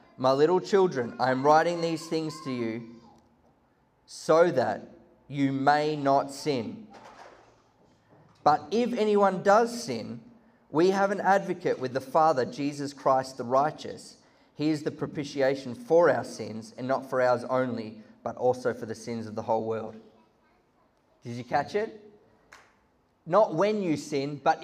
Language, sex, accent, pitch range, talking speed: English, male, Australian, 120-155 Hz, 150 wpm